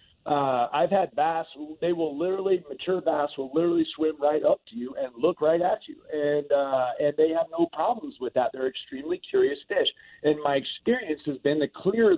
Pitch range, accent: 145-195 Hz, American